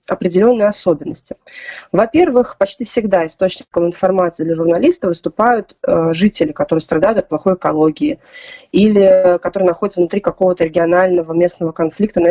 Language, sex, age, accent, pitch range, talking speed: Russian, female, 20-39, native, 175-220 Hz, 120 wpm